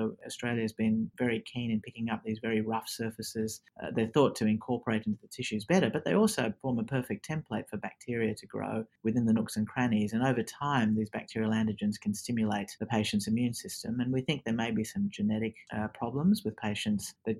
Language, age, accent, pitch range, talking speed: English, 40-59, Australian, 110-125 Hz, 215 wpm